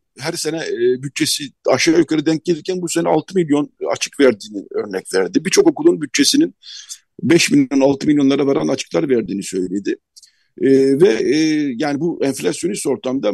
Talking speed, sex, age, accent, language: 150 wpm, male, 60-79, native, Turkish